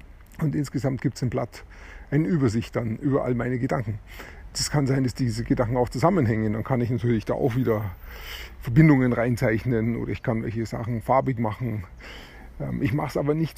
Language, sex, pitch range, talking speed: German, male, 110-135 Hz, 185 wpm